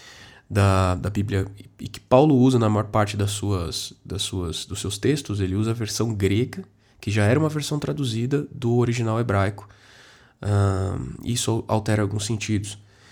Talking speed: 165 wpm